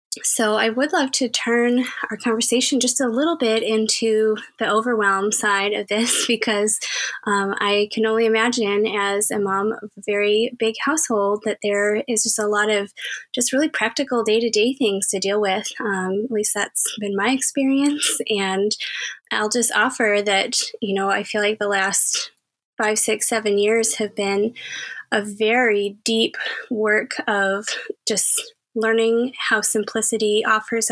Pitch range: 205-230 Hz